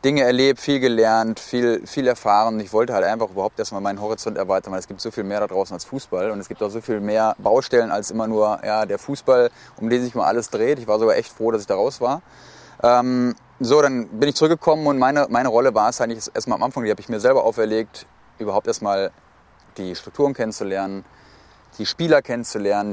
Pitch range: 105-130 Hz